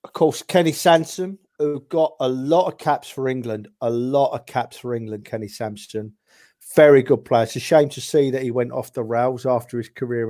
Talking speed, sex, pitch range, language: 215 wpm, male, 125-165 Hz, English